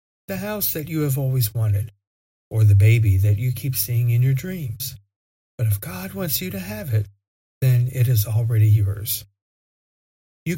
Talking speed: 175 wpm